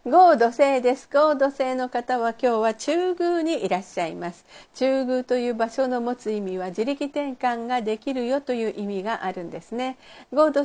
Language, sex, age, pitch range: Japanese, female, 50-69, 220-285 Hz